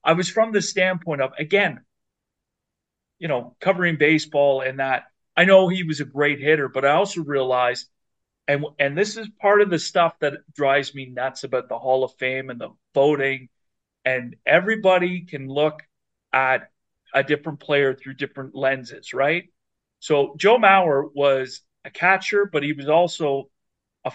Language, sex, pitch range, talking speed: English, male, 130-160 Hz, 170 wpm